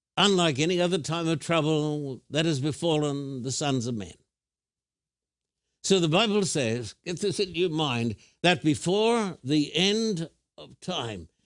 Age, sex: 60-79, male